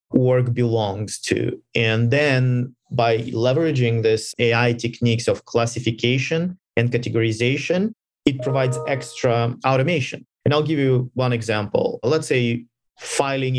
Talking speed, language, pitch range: 120 wpm, English, 115-140 Hz